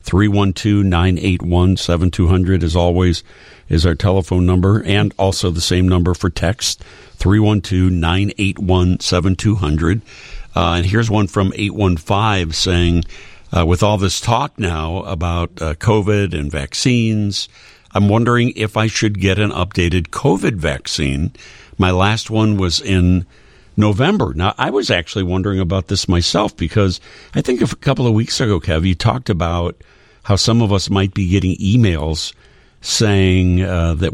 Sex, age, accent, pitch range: male, 60-79, American, 85-105 Hz